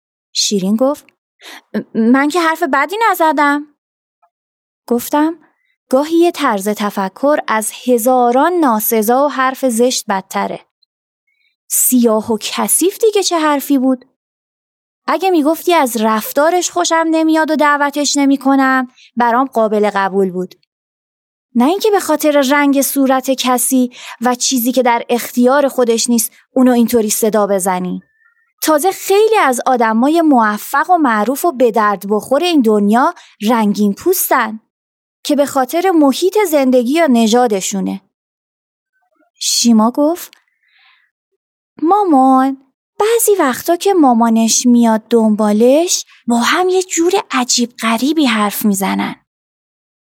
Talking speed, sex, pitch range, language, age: 115 wpm, female, 230-320 Hz, Persian, 20-39